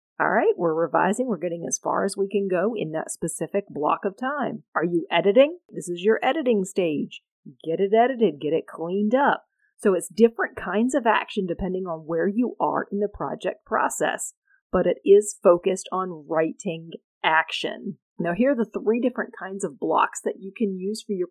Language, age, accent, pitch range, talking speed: English, 40-59, American, 190-255 Hz, 195 wpm